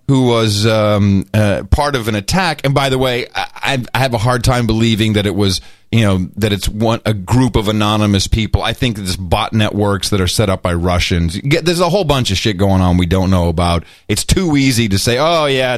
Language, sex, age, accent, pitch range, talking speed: English, male, 30-49, American, 105-150 Hz, 235 wpm